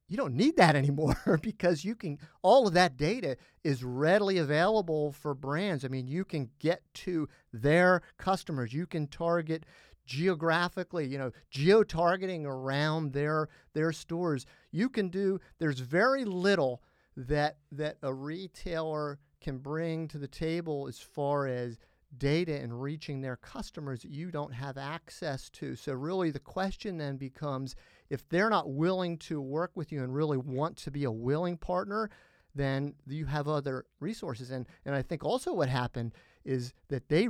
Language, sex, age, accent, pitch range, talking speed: English, male, 50-69, American, 135-170 Hz, 165 wpm